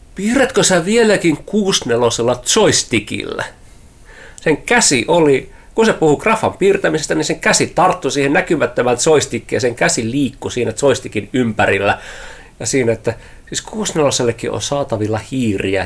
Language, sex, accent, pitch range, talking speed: Finnish, male, native, 95-130 Hz, 130 wpm